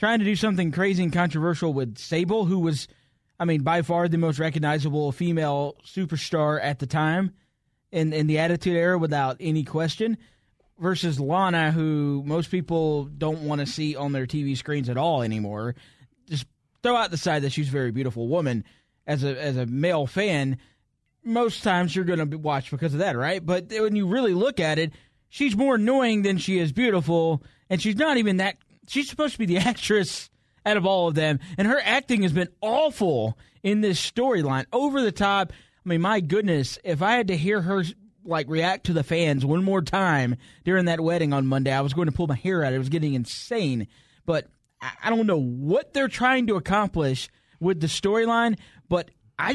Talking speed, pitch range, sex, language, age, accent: 200 wpm, 145-195 Hz, male, English, 20-39, American